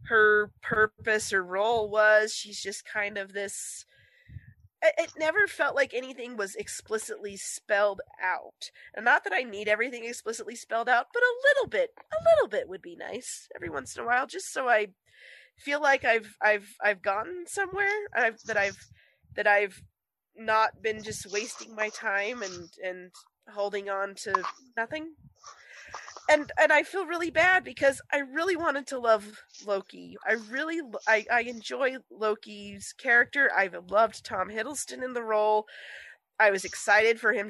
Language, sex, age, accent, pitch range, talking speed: English, female, 20-39, American, 205-270 Hz, 165 wpm